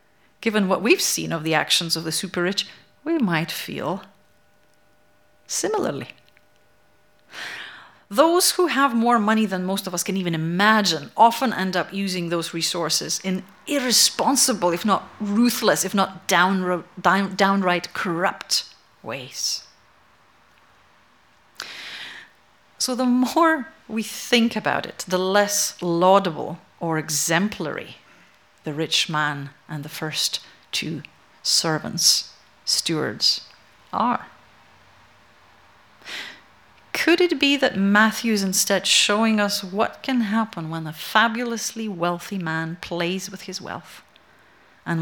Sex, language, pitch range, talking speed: female, English, 160-220 Hz, 115 wpm